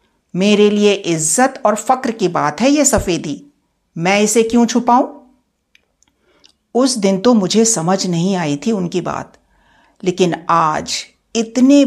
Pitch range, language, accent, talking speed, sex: 180-255 Hz, Hindi, native, 135 wpm, female